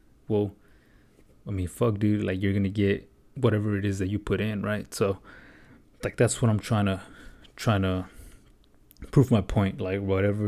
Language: English